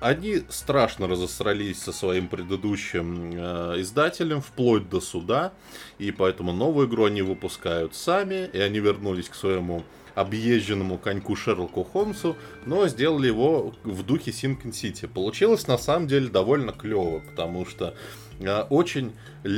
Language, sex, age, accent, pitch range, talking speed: Russian, male, 20-39, native, 95-115 Hz, 130 wpm